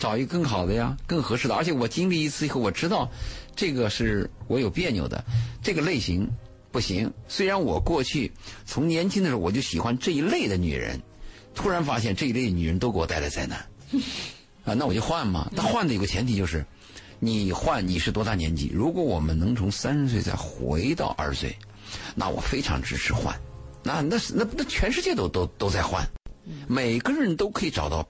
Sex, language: male, Chinese